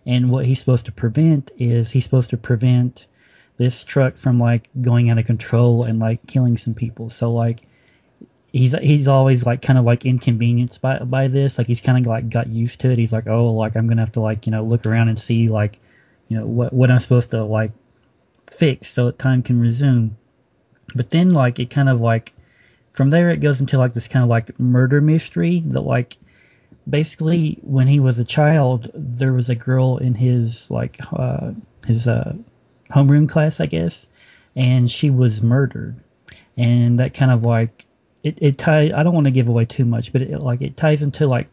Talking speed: 210 wpm